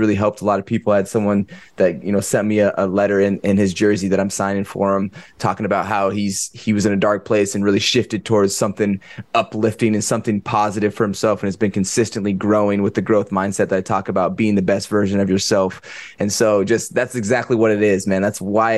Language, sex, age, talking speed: English, male, 20-39, 245 wpm